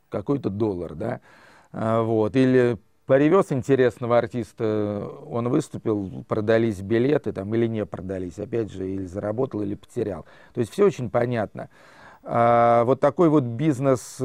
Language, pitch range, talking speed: Russian, 110-125 Hz, 140 wpm